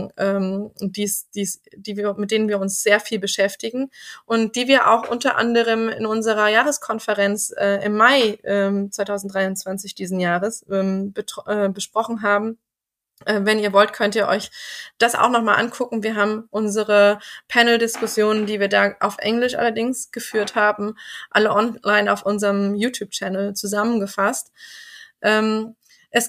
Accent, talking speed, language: German, 145 wpm, German